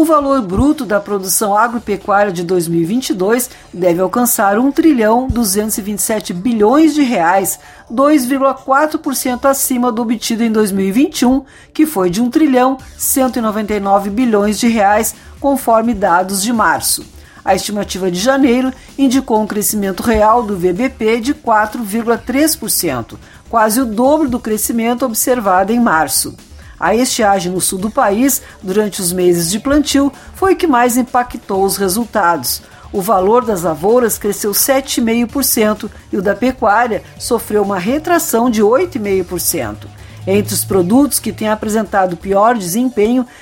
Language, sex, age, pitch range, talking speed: Portuguese, female, 50-69, 200-260 Hz, 125 wpm